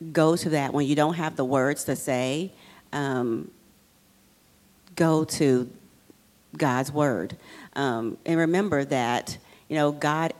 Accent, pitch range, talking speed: American, 135-160 Hz, 135 wpm